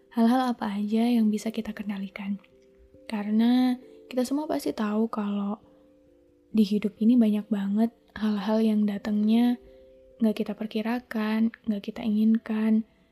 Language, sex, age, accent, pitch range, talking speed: Indonesian, female, 10-29, native, 205-230 Hz, 125 wpm